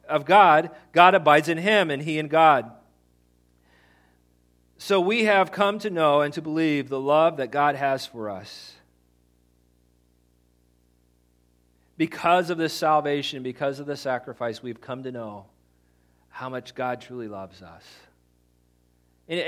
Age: 40-59